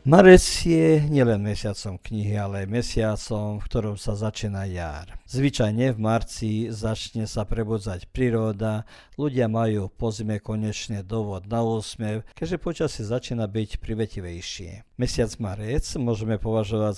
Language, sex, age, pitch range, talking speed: Croatian, male, 50-69, 105-120 Hz, 125 wpm